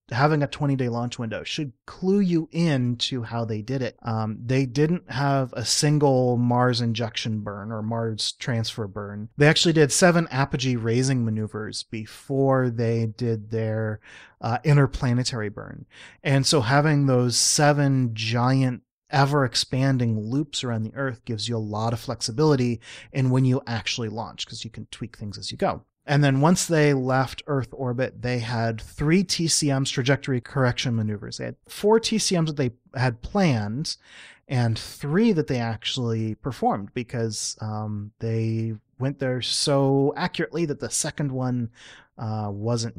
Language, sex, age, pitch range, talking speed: English, male, 30-49, 115-145 Hz, 155 wpm